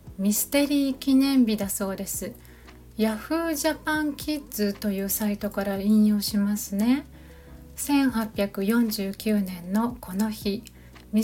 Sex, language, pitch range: female, Japanese, 205-255 Hz